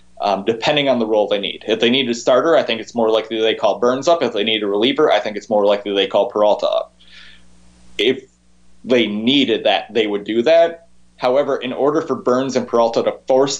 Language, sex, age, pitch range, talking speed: English, male, 20-39, 100-130 Hz, 230 wpm